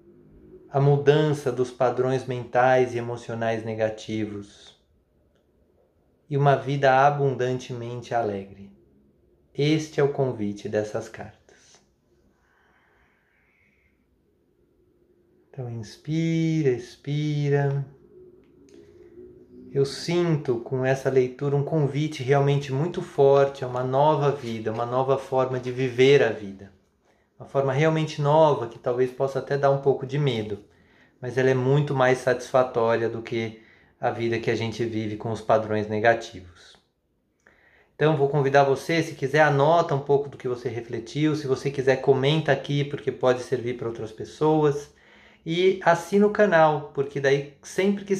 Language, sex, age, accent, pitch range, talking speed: Portuguese, male, 20-39, Brazilian, 115-145 Hz, 130 wpm